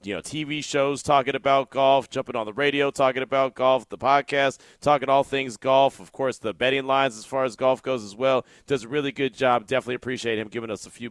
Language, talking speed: English, 240 wpm